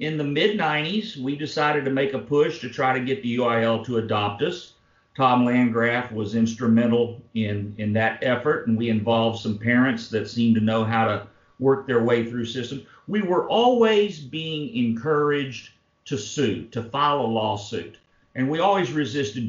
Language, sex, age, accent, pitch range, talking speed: English, male, 50-69, American, 115-140 Hz, 175 wpm